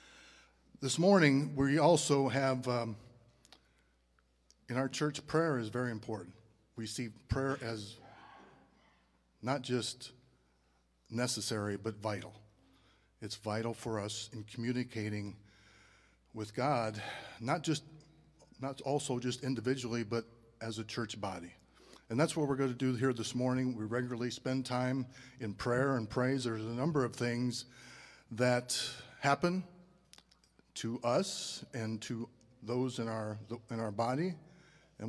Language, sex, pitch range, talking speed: English, male, 110-130 Hz, 130 wpm